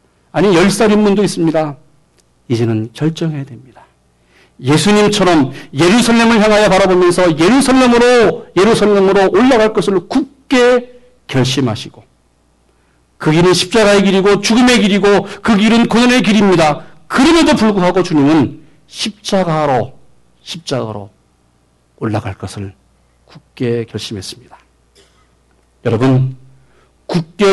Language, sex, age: Korean, male, 50-69